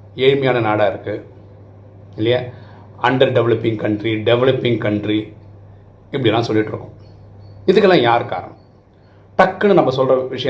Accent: native